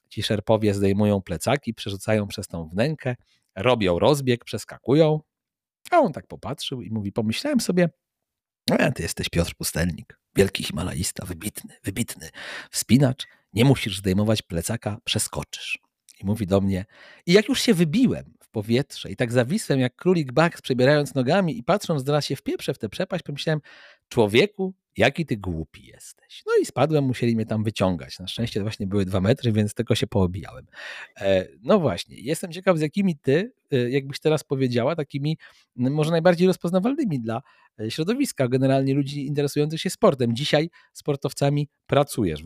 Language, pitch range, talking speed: Polish, 105-155 Hz, 155 wpm